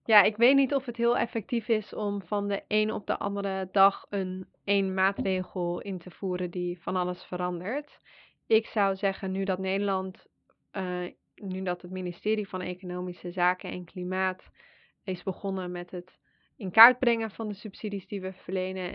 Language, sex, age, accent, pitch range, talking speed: Dutch, female, 20-39, Dutch, 180-200 Hz, 175 wpm